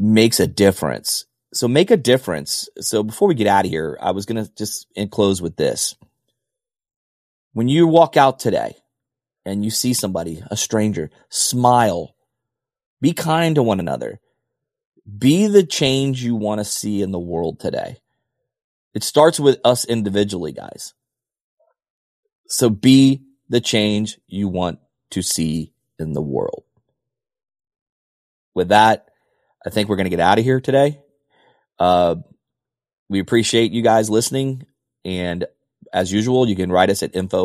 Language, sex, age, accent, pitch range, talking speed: English, male, 30-49, American, 95-125 Hz, 145 wpm